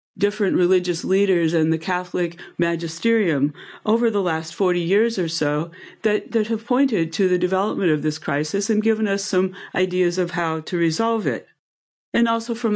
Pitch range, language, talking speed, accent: 165-215 Hz, English, 175 wpm, American